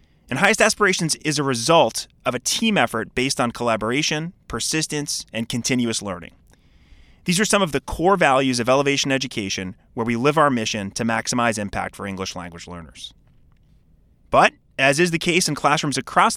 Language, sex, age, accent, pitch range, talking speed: English, male, 30-49, American, 115-165 Hz, 170 wpm